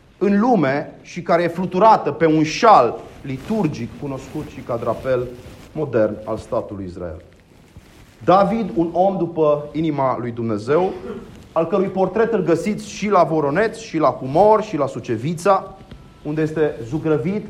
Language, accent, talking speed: Romanian, native, 145 wpm